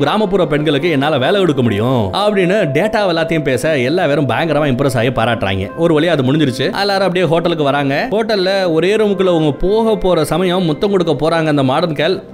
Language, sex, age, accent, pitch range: Tamil, male, 20-39, native, 140-185 Hz